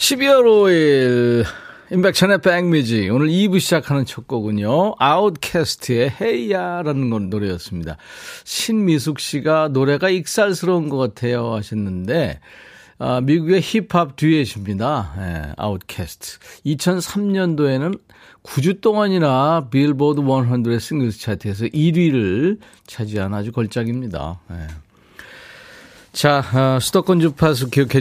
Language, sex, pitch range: Korean, male, 110-165 Hz